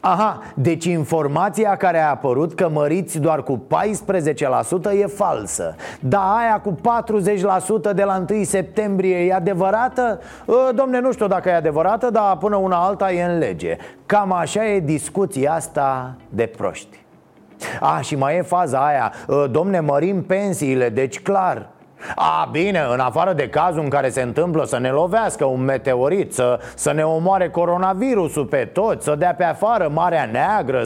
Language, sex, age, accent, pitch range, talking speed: Romanian, male, 30-49, native, 155-215 Hz, 165 wpm